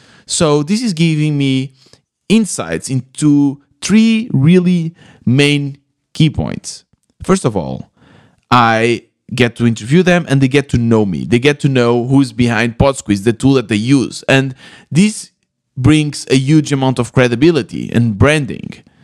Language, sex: English, male